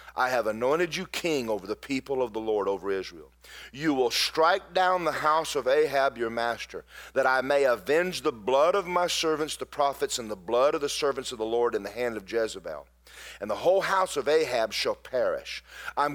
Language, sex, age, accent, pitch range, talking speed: English, male, 40-59, American, 120-165 Hz, 210 wpm